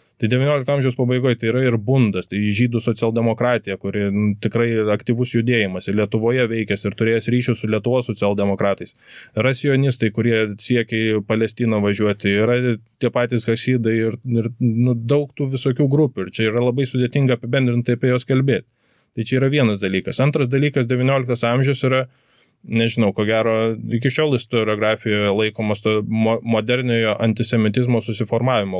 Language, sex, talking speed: English, male, 150 wpm